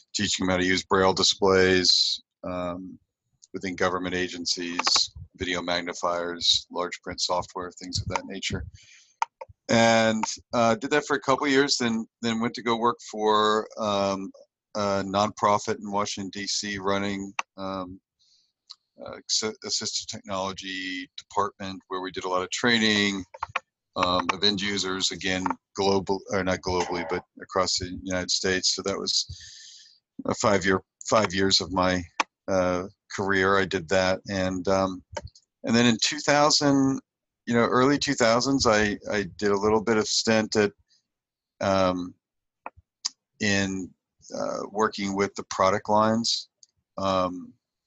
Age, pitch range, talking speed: 50-69, 95-110 Hz, 140 wpm